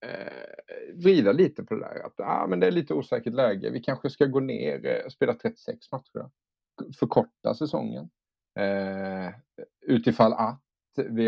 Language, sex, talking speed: Swedish, male, 160 wpm